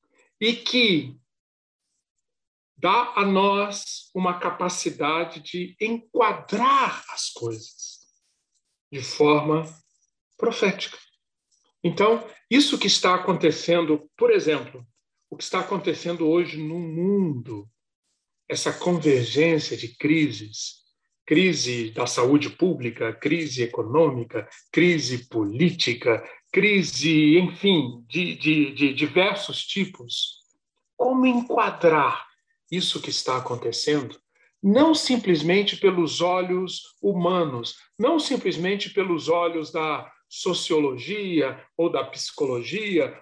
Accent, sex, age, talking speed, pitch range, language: Brazilian, male, 50-69, 90 wpm, 150-205 Hz, Portuguese